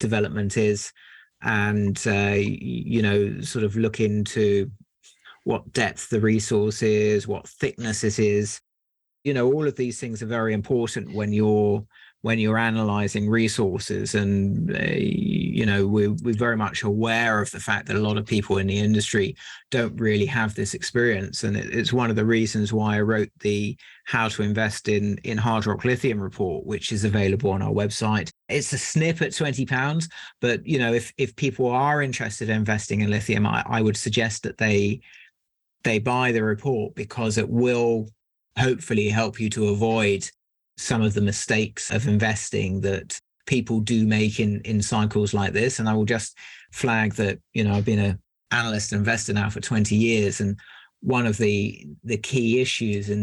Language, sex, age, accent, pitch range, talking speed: English, male, 40-59, British, 105-115 Hz, 180 wpm